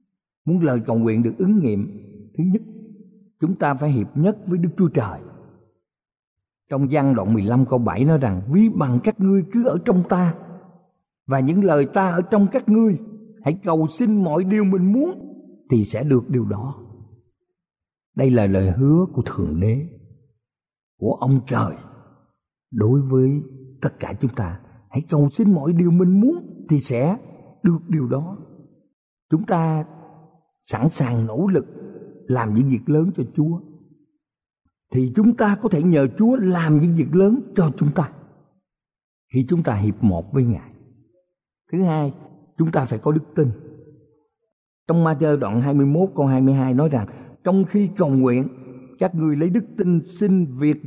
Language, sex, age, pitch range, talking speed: Vietnamese, male, 50-69, 130-180 Hz, 170 wpm